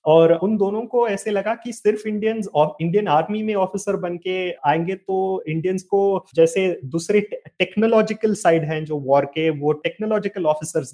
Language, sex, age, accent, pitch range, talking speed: Hindi, male, 30-49, native, 155-195 Hz, 165 wpm